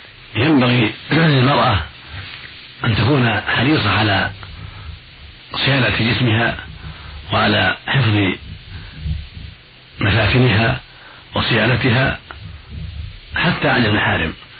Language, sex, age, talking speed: Arabic, male, 50-69, 65 wpm